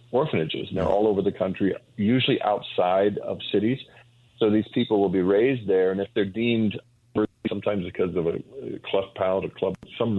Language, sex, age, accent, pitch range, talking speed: English, male, 50-69, American, 95-115 Hz, 170 wpm